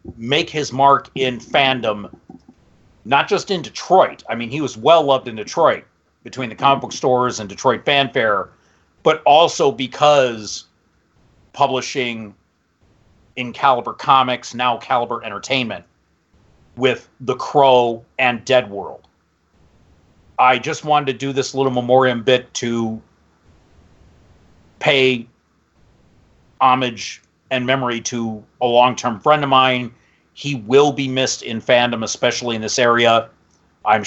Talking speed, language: 125 wpm, English